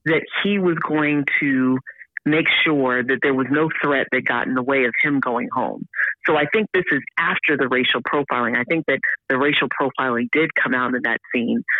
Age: 40-59